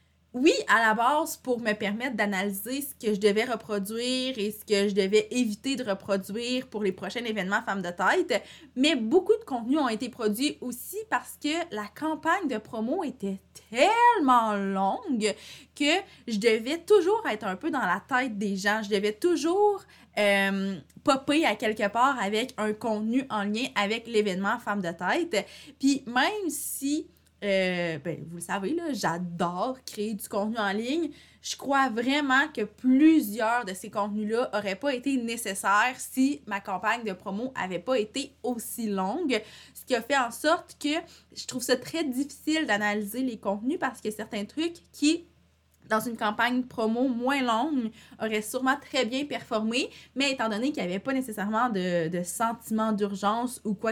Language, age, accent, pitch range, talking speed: French, 20-39, Canadian, 205-270 Hz, 175 wpm